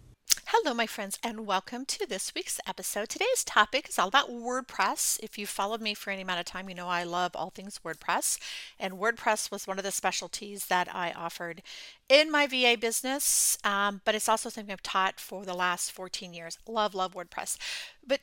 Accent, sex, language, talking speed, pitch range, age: American, female, English, 200 wpm, 195-260 Hz, 40-59